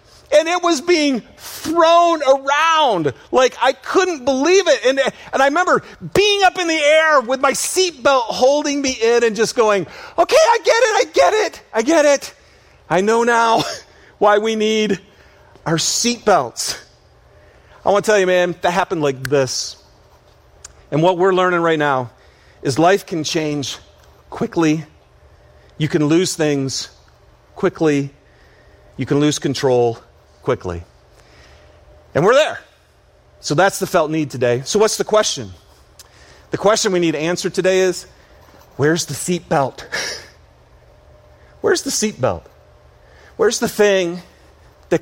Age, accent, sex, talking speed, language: 40-59, American, male, 145 wpm, English